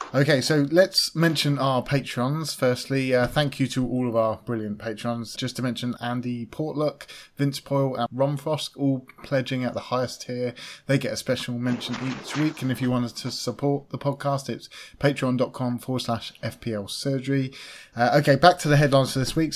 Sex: male